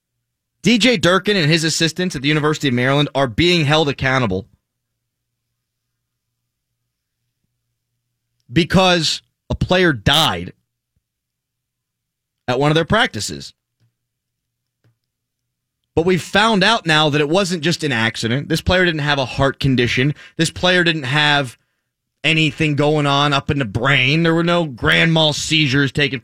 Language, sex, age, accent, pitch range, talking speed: English, male, 30-49, American, 120-180 Hz, 135 wpm